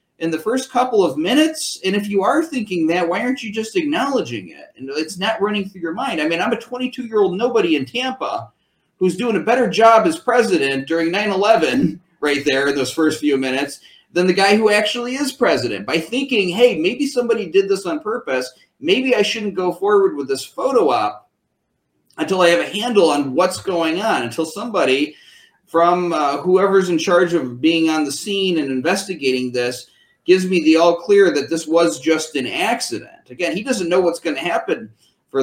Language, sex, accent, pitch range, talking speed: English, male, American, 155-225 Hz, 200 wpm